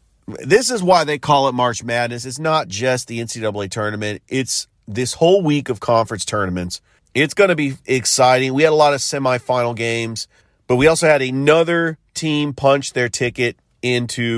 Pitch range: 115-155 Hz